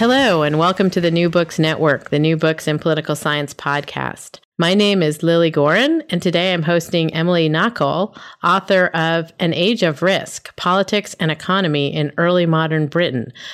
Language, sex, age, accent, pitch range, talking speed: English, female, 40-59, American, 160-195 Hz, 175 wpm